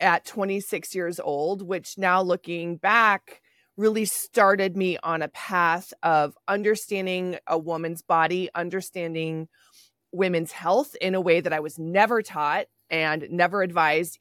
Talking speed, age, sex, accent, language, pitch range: 140 wpm, 20-39, female, American, English, 165-195 Hz